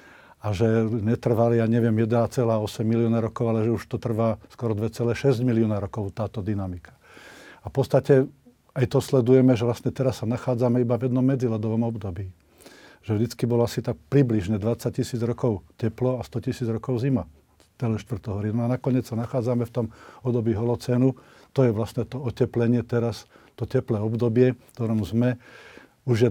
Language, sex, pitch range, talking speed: Slovak, male, 110-125 Hz, 170 wpm